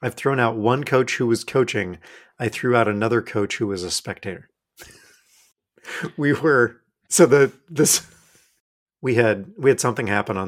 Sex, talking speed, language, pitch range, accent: male, 165 wpm, English, 100-135 Hz, American